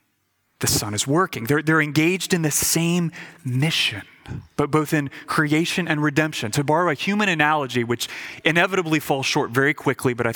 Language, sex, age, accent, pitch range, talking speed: English, male, 30-49, American, 135-175 Hz, 175 wpm